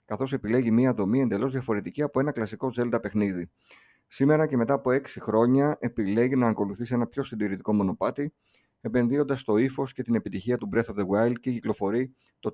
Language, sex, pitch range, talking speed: Greek, male, 105-130 Hz, 180 wpm